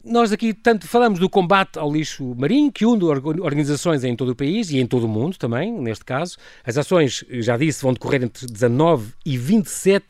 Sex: male